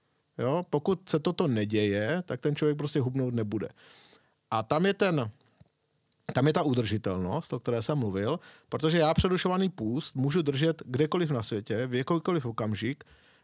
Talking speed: 150 wpm